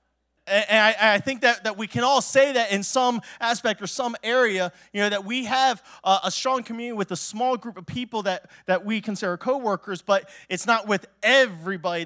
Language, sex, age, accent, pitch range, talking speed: English, male, 20-39, American, 170-230 Hz, 190 wpm